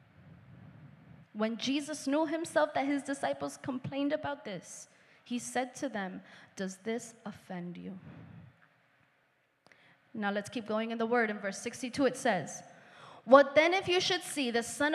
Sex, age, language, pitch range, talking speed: female, 20-39, English, 210-285 Hz, 155 wpm